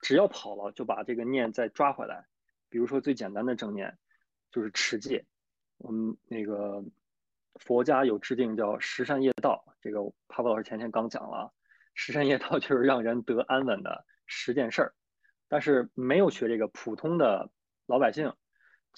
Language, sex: Chinese, male